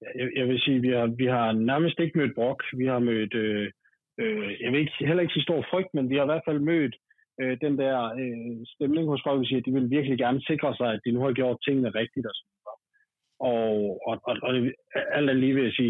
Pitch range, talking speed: 120-145 Hz, 245 wpm